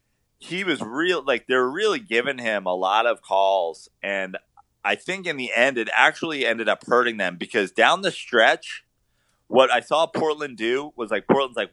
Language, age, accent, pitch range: English, 30-49, American, 100-140 Hz